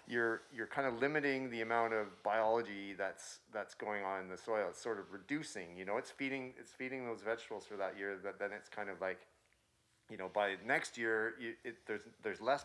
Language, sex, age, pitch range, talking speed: English, male, 40-59, 100-120 Hz, 225 wpm